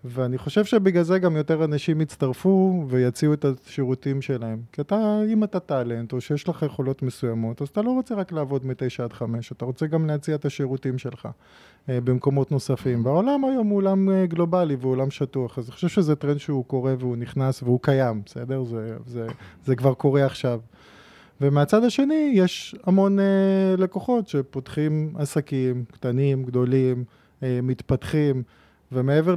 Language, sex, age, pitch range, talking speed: Hebrew, male, 20-39, 125-160 Hz, 165 wpm